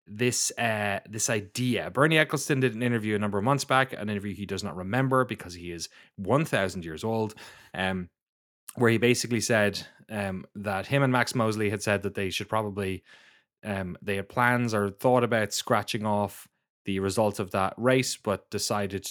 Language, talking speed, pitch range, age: English, 185 wpm, 100-125 Hz, 20-39